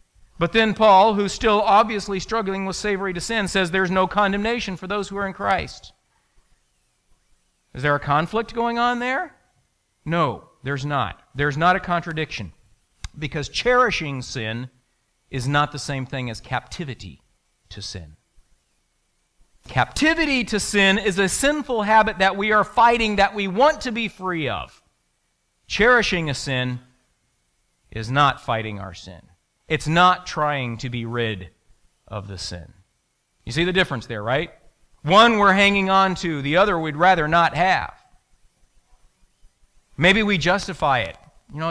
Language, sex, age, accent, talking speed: English, male, 50-69, American, 150 wpm